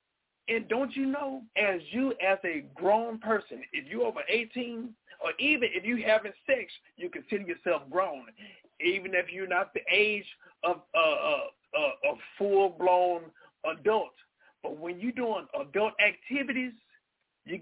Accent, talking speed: American, 155 wpm